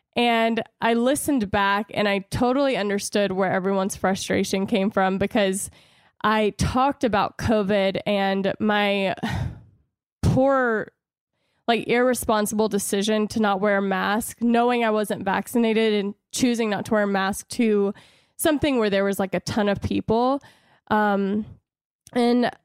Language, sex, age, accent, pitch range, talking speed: English, female, 10-29, American, 200-230 Hz, 140 wpm